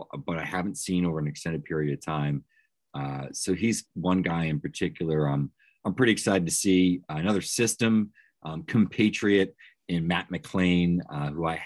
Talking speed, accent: 170 wpm, American